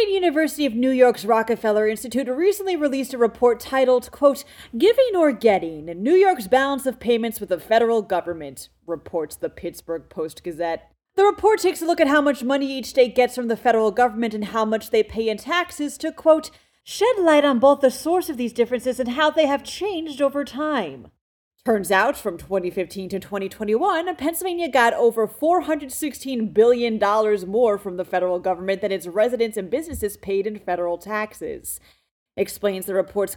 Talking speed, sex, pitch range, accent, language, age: 175 wpm, female, 195-285 Hz, American, English, 30-49